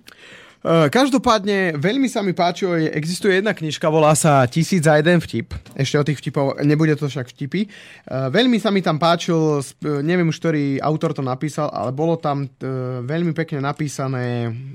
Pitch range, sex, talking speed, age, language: 130-165 Hz, male, 155 wpm, 20-39, Slovak